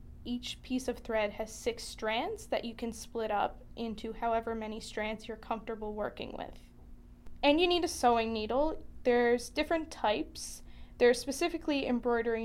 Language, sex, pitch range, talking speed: English, female, 225-255 Hz, 155 wpm